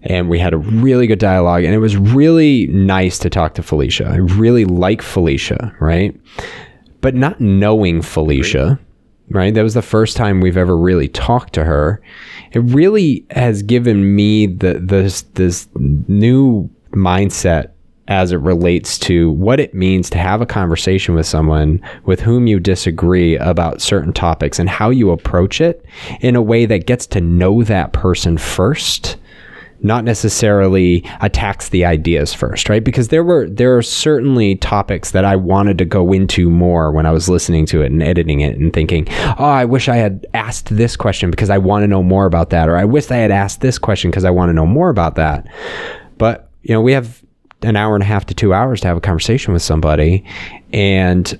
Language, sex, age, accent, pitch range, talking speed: English, male, 20-39, American, 85-115 Hz, 195 wpm